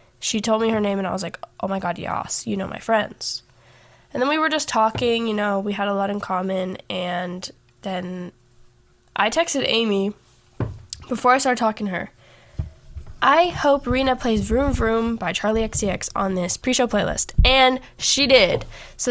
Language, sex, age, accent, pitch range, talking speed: English, female, 10-29, American, 195-235 Hz, 185 wpm